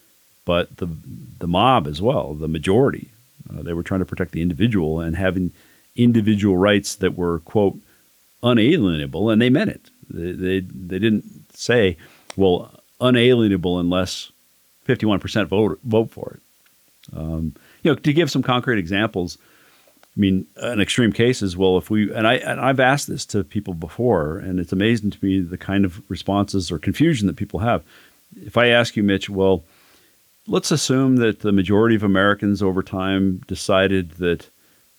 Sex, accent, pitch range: male, American, 95-120 Hz